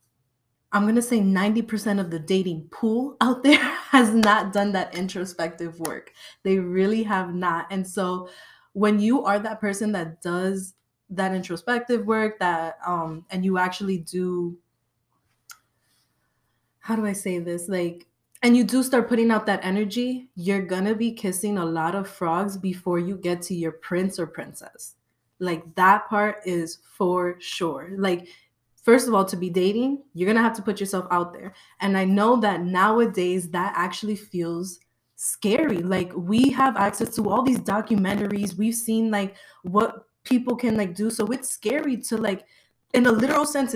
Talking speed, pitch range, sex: 175 wpm, 180-220 Hz, female